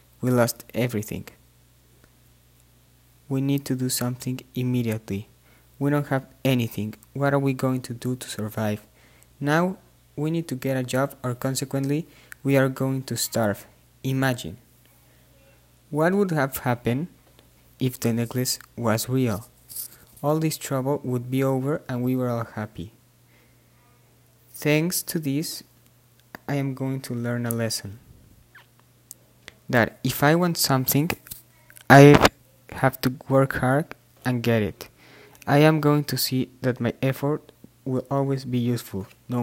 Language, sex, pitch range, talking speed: Spanish, male, 115-135 Hz, 140 wpm